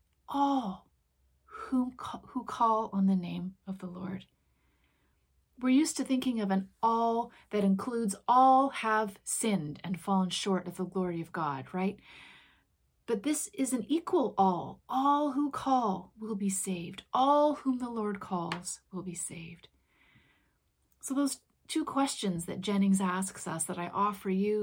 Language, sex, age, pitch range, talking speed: English, female, 30-49, 180-245 Hz, 155 wpm